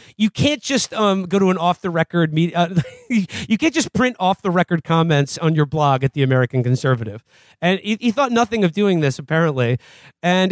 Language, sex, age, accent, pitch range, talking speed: English, male, 40-59, American, 145-200 Hz, 210 wpm